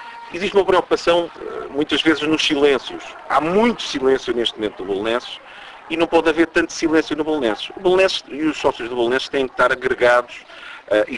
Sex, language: male, Portuguese